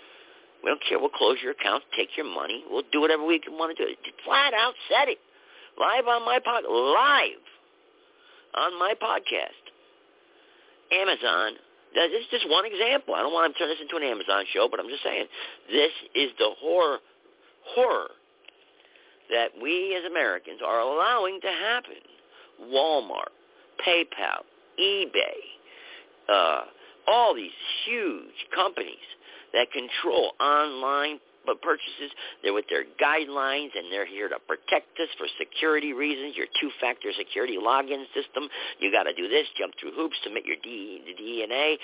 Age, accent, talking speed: 50-69, American, 150 wpm